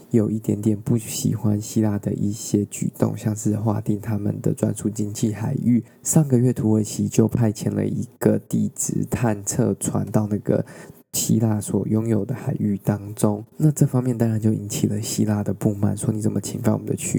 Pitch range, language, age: 105-120 Hz, Chinese, 20-39